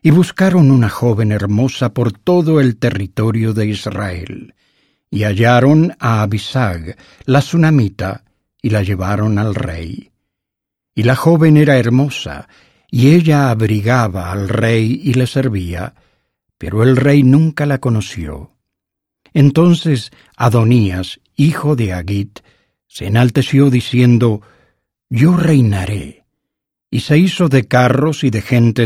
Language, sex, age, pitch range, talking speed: English, male, 60-79, 105-140 Hz, 125 wpm